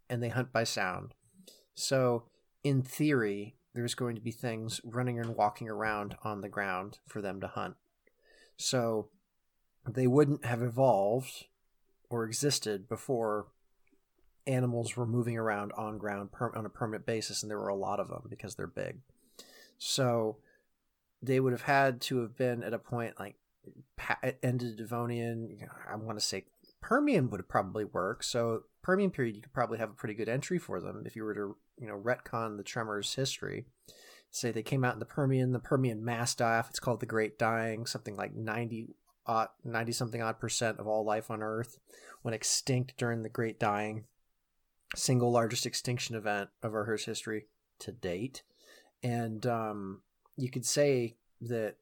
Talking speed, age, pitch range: 170 wpm, 30-49, 110-125 Hz